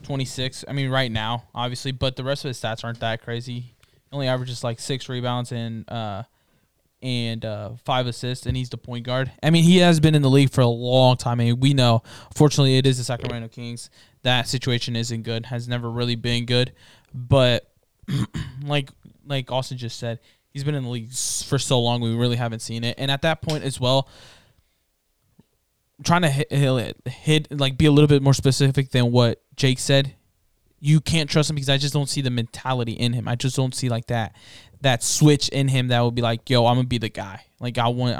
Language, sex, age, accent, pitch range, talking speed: English, male, 20-39, American, 115-135 Hz, 220 wpm